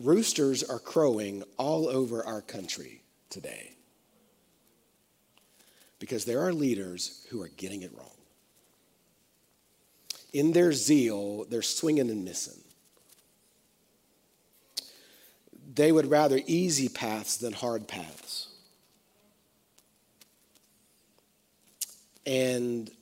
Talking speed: 85 wpm